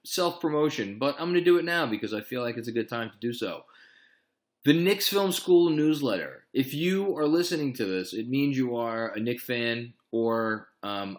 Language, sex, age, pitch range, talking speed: English, male, 20-39, 100-145 Hz, 210 wpm